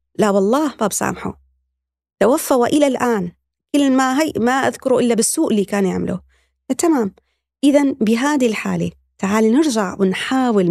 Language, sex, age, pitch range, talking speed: Arabic, female, 30-49, 185-255 Hz, 135 wpm